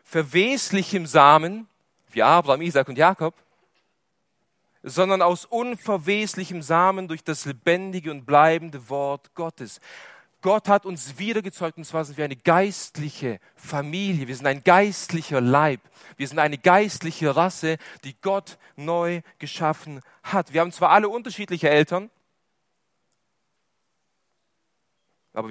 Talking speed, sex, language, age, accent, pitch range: 120 wpm, male, German, 40-59, German, 135-180 Hz